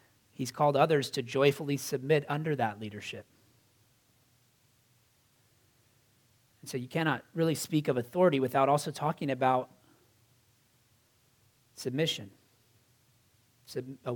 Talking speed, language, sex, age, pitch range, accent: 100 wpm, English, male, 30-49, 120-160 Hz, American